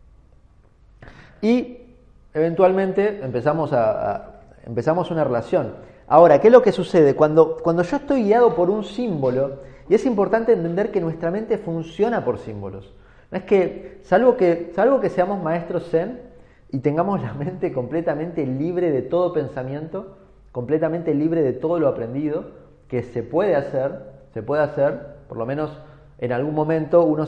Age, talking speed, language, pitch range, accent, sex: 30-49, 155 wpm, Spanish, 120-170 Hz, Argentinian, male